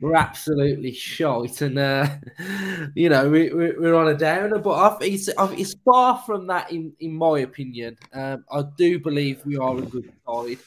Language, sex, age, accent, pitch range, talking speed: English, male, 20-39, British, 135-165 Hz, 190 wpm